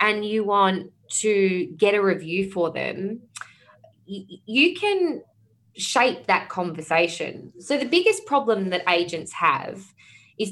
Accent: Australian